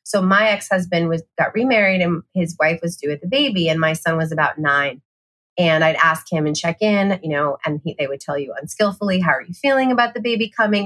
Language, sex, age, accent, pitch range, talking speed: English, female, 30-49, American, 160-225 Hz, 245 wpm